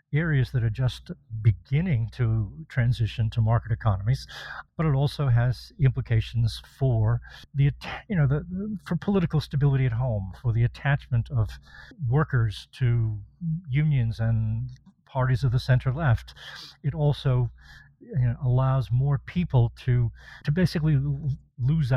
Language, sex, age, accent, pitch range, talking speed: English, male, 50-69, American, 120-150 Hz, 135 wpm